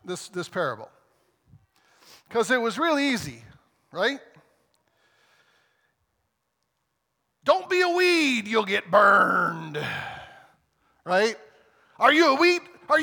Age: 50-69